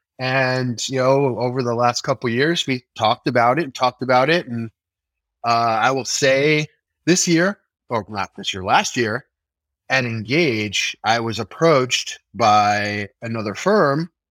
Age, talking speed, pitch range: 30-49, 160 wpm, 110-135 Hz